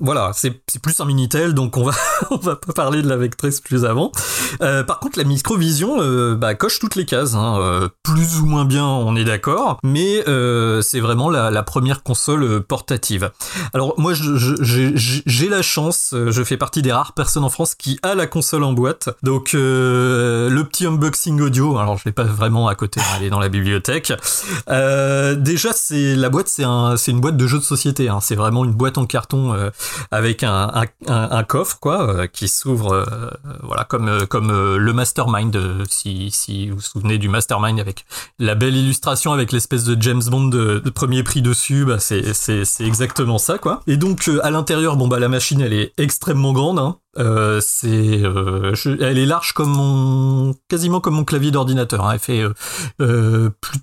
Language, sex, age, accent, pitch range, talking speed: French, male, 30-49, French, 115-145 Hz, 210 wpm